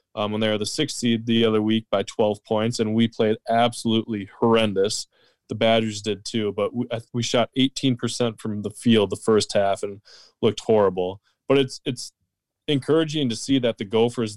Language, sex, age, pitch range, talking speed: English, male, 20-39, 105-120 Hz, 190 wpm